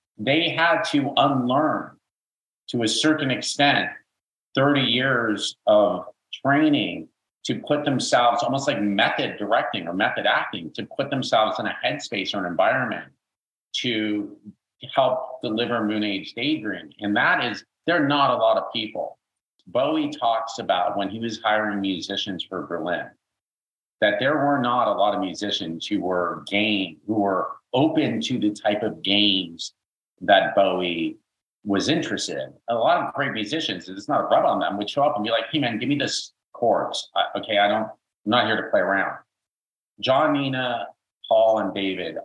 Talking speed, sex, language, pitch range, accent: 170 wpm, male, English, 95-135 Hz, American